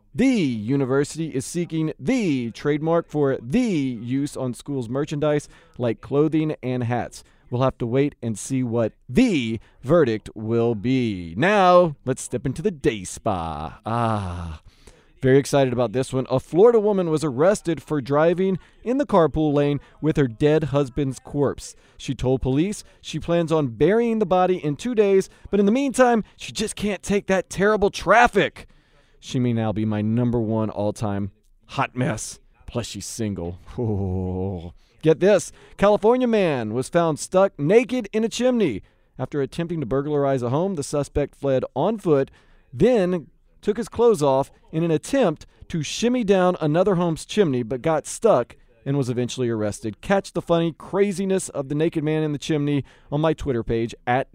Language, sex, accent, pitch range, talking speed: English, male, American, 120-180 Hz, 170 wpm